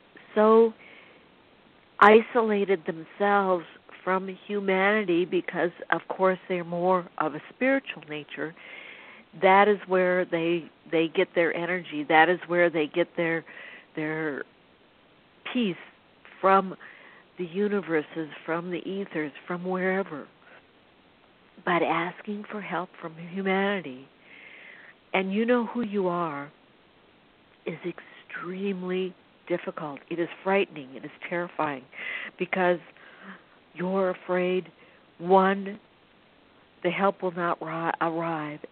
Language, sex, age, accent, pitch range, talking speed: English, female, 60-79, American, 170-200 Hz, 105 wpm